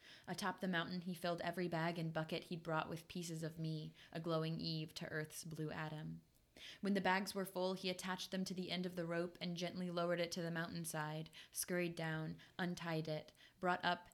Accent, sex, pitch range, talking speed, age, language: American, female, 160-180 Hz, 210 wpm, 20-39, English